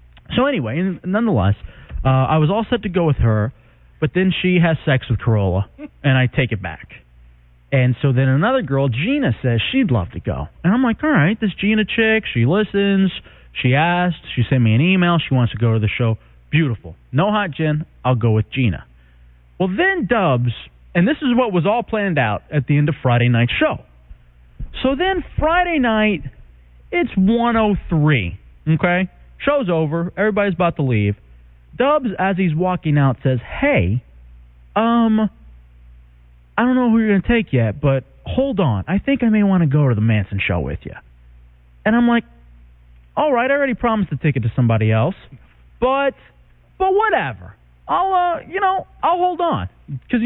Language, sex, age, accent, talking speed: English, male, 30-49, American, 190 wpm